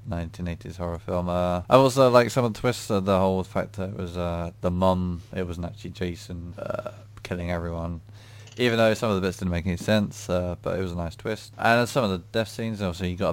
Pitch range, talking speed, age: 90-110 Hz, 245 wpm, 20-39